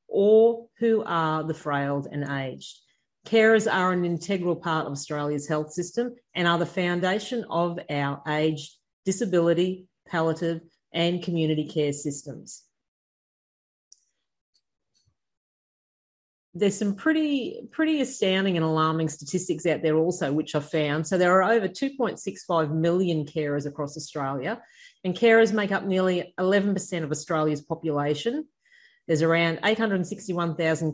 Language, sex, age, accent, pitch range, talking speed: English, female, 40-59, Australian, 155-205 Hz, 125 wpm